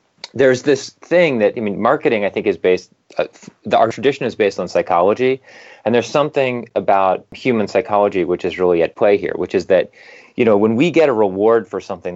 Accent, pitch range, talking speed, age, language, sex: American, 95-125 Hz, 205 wpm, 30-49, English, male